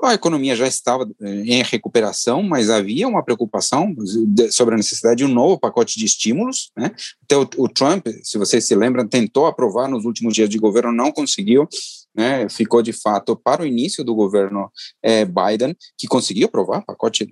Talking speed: 175 wpm